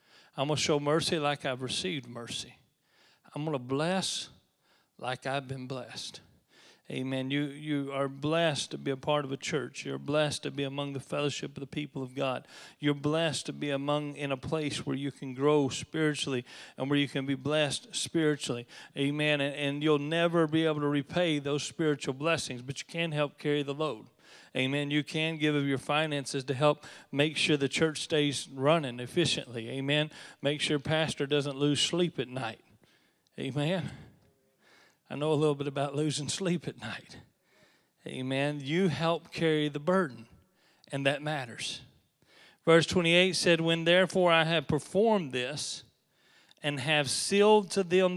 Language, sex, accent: English, male, American